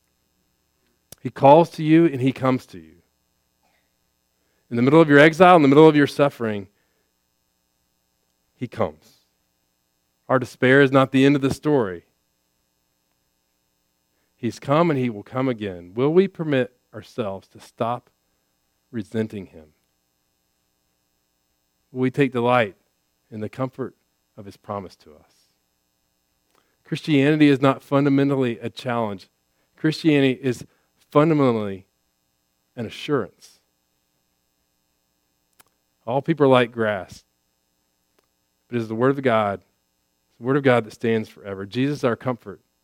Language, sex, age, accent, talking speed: English, male, 40-59, American, 125 wpm